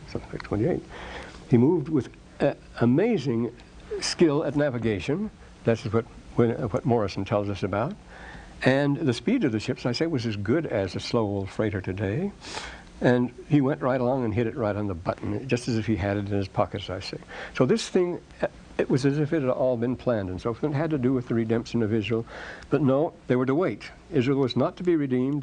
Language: English